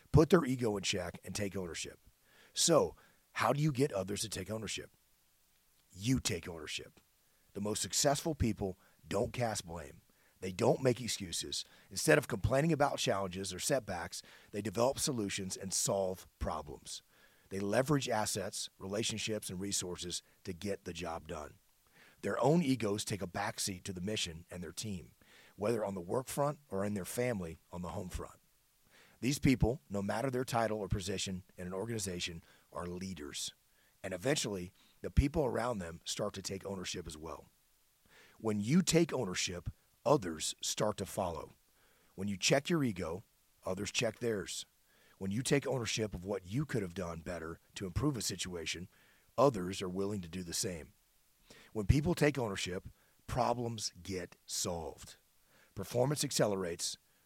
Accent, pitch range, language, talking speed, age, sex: American, 90-120 Hz, English, 160 wpm, 40-59, male